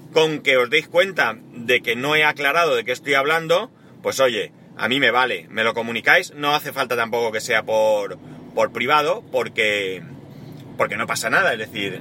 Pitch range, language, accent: 130-170 Hz, Spanish, Spanish